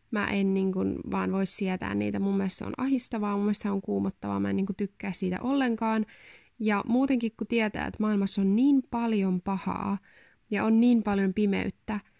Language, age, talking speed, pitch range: Finnish, 20-39, 175 wpm, 190-220 Hz